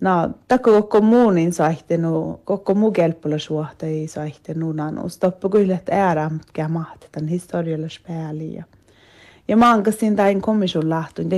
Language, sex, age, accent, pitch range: Finnish, female, 30-49, Swedish, 155-185 Hz